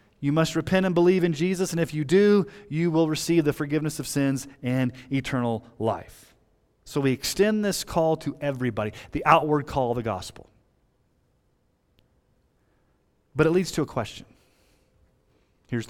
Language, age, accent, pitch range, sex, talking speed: English, 30-49, American, 120-155 Hz, male, 155 wpm